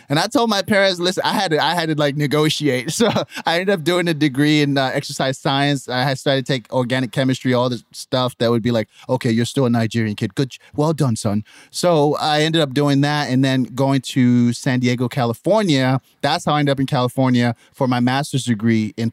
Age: 30-49